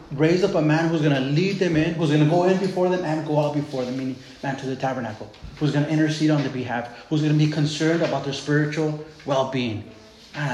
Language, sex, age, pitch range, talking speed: English, male, 20-39, 150-185 Hz, 250 wpm